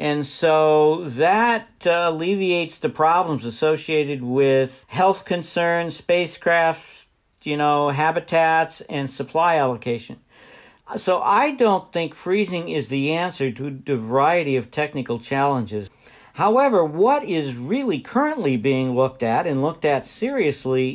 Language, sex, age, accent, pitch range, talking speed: English, male, 60-79, American, 130-165 Hz, 125 wpm